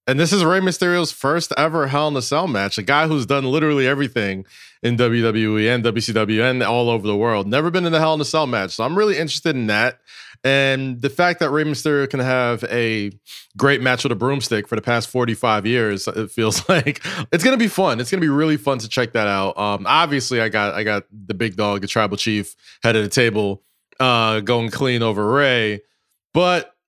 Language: English